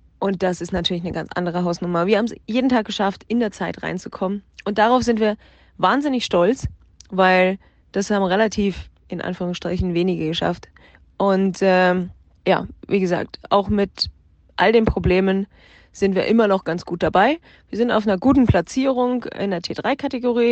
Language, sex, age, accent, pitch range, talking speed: German, female, 20-39, German, 175-210 Hz, 170 wpm